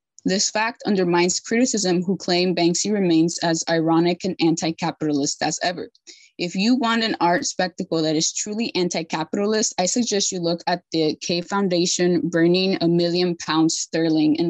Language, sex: English, female